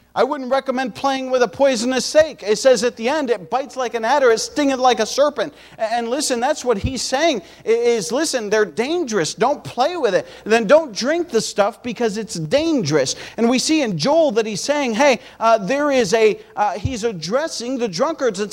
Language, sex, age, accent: English, male, 40-59, American